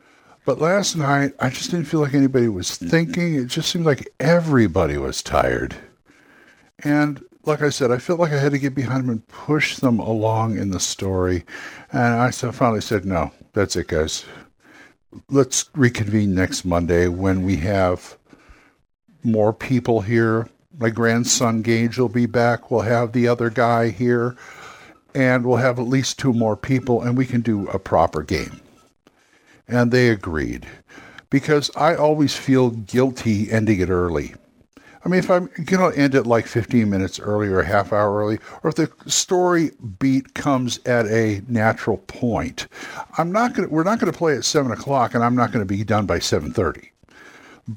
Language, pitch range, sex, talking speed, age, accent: English, 110-140 Hz, male, 180 wpm, 60-79, American